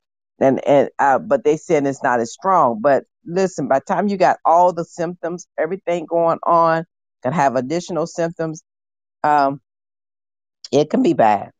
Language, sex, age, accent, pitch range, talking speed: English, female, 40-59, American, 130-190 Hz, 165 wpm